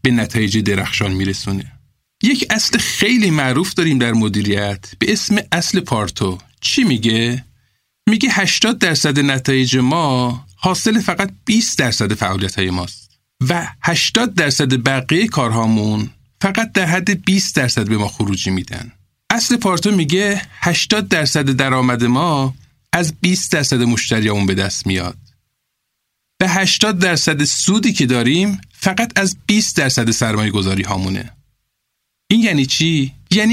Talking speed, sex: 130 wpm, male